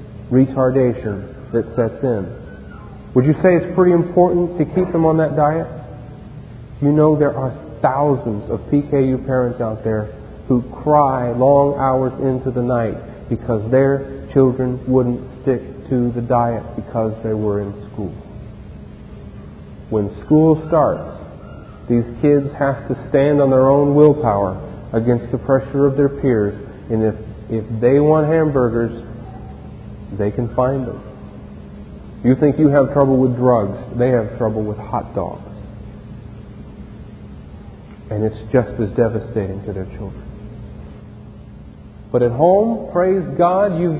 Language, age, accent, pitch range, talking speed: English, 40-59, American, 110-145 Hz, 140 wpm